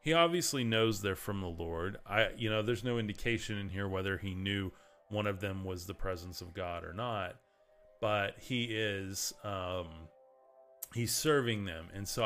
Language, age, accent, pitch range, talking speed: English, 30-49, American, 90-115 Hz, 180 wpm